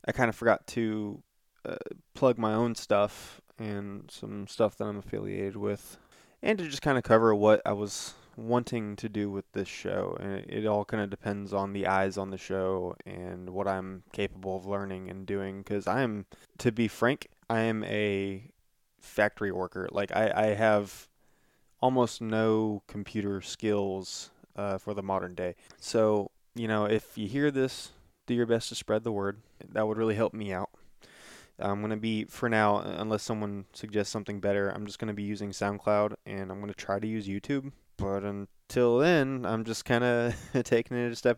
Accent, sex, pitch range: American, male, 100-115 Hz